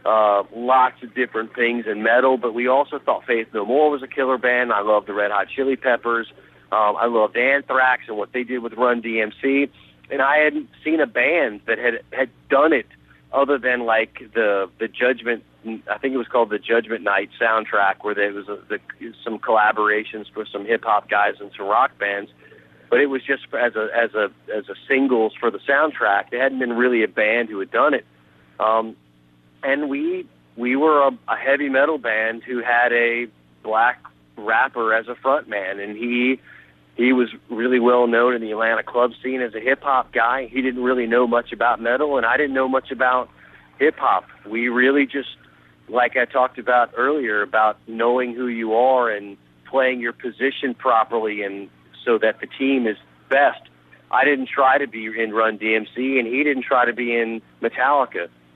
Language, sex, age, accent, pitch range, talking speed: English, male, 40-59, American, 105-130 Hz, 195 wpm